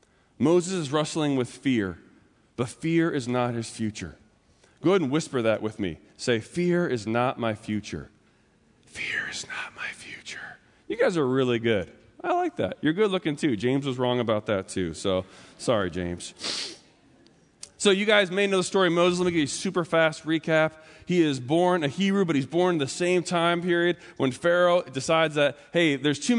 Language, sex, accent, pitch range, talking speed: English, male, American, 140-185 Hz, 200 wpm